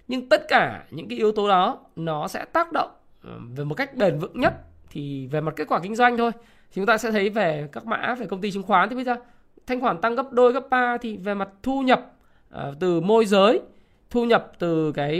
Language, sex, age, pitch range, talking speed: Vietnamese, male, 20-39, 160-230 Hz, 245 wpm